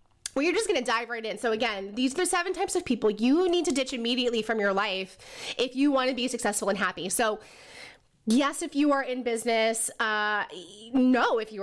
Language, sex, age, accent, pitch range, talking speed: English, female, 20-39, American, 220-275 Hz, 225 wpm